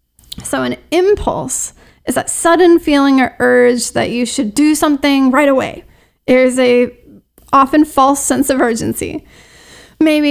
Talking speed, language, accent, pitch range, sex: 140 wpm, English, American, 245-305 Hz, female